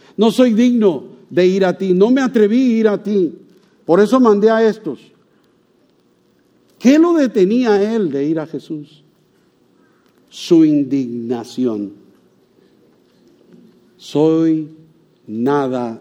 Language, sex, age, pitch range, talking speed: English, male, 50-69, 140-225 Hz, 115 wpm